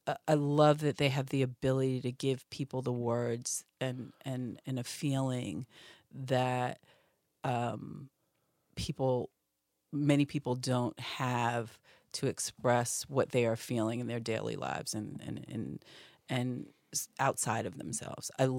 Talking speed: 135 wpm